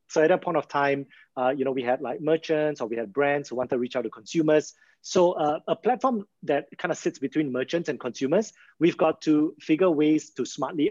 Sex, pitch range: male, 130-160 Hz